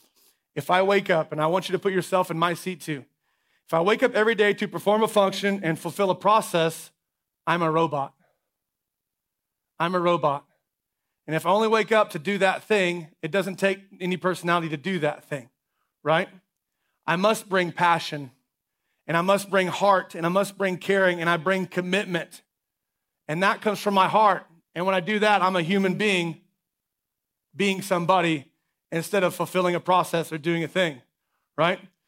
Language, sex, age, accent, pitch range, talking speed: English, male, 30-49, American, 170-200 Hz, 185 wpm